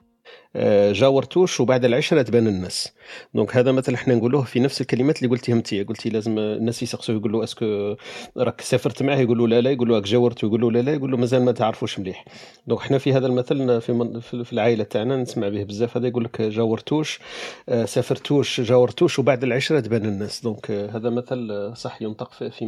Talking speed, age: 175 wpm, 40-59